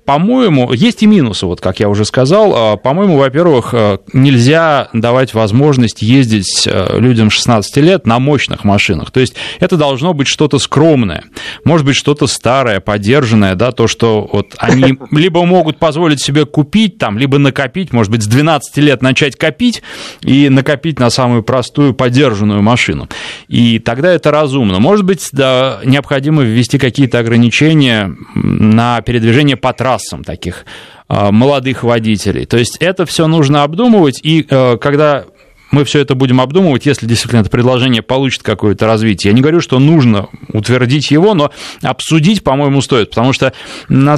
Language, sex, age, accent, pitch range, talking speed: Russian, male, 30-49, native, 115-150 Hz, 145 wpm